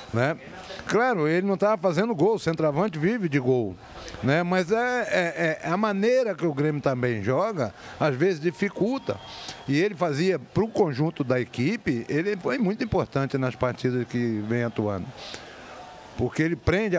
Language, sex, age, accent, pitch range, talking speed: Portuguese, male, 60-79, Brazilian, 125-180 Hz, 150 wpm